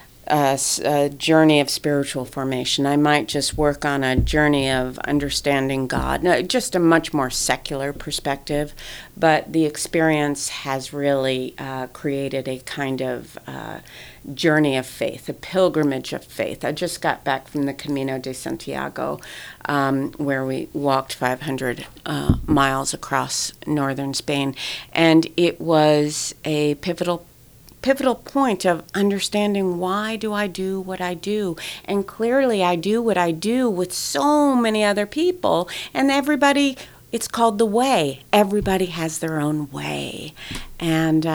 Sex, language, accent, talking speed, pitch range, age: female, English, American, 140 wpm, 140-195 Hz, 50-69